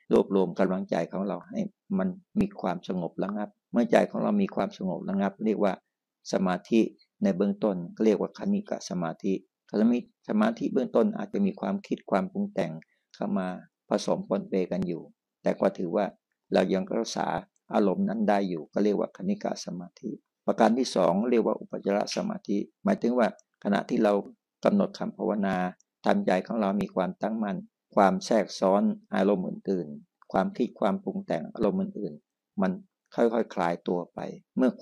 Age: 60-79